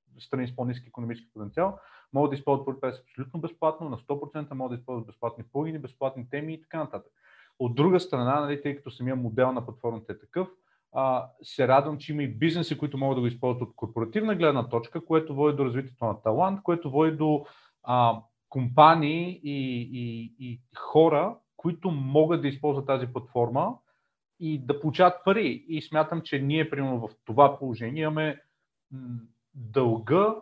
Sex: male